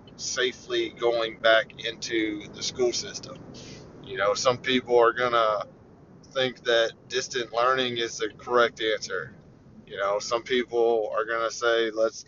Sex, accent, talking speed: male, American, 140 wpm